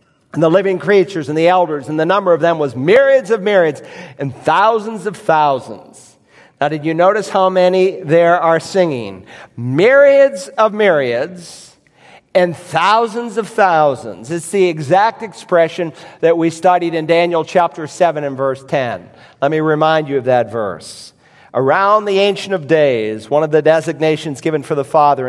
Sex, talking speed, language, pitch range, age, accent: male, 165 wpm, English, 150-190 Hz, 50-69, American